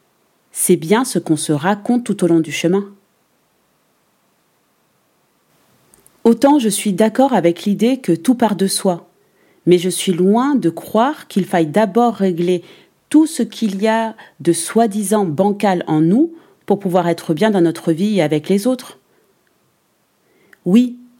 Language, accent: French, French